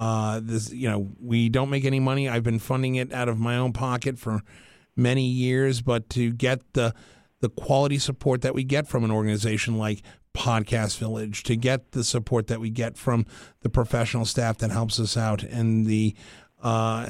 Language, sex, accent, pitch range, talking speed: English, male, American, 110-130 Hz, 195 wpm